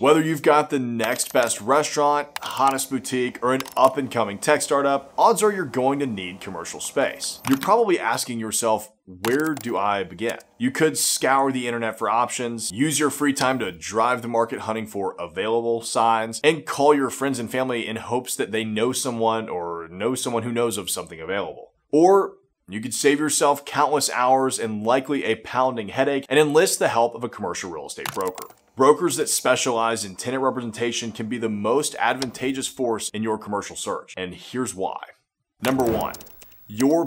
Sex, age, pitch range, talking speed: male, 30-49, 115-140 Hz, 185 wpm